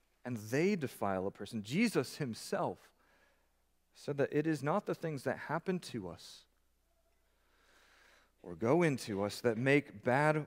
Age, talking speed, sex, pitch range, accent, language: 40-59, 145 wpm, male, 90-145 Hz, American, English